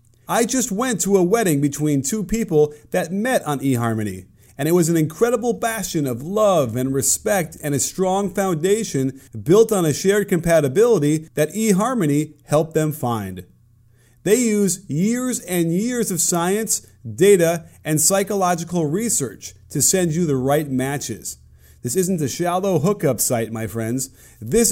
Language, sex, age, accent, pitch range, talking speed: English, male, 30-49, American, 130-195 Hz, 155 wpm